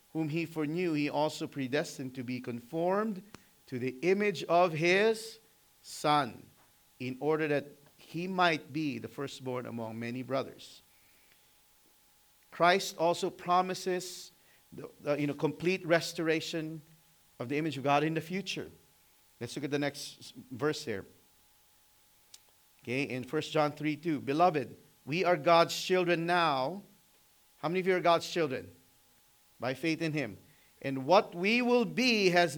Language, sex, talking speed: English, male, 145 wpm